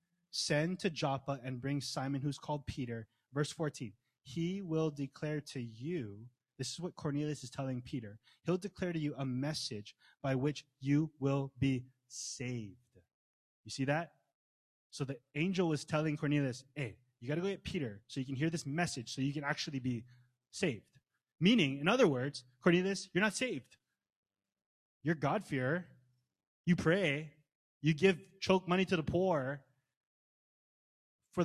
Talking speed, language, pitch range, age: 160 wpm, English, 125-170 Hz, 20-39